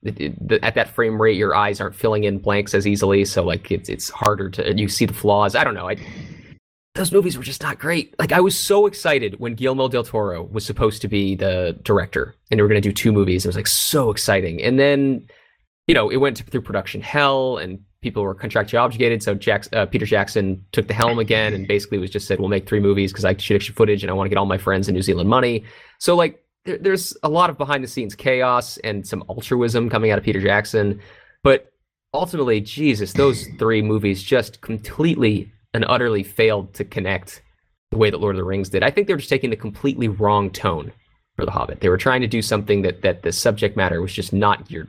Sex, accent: male, American